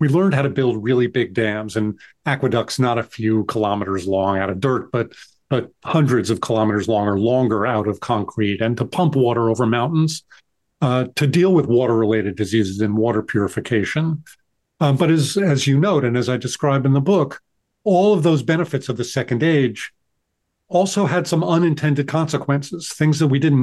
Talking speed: 190 wpm